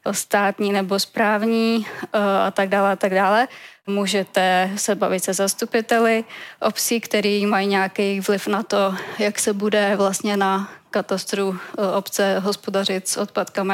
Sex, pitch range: female, 195-210 Hz